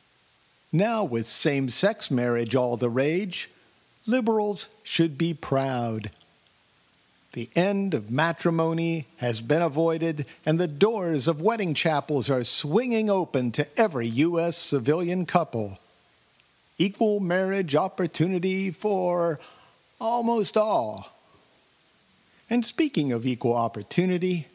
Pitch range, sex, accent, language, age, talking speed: 125-180 Hz, male, American, English, 50-69, 105 wpm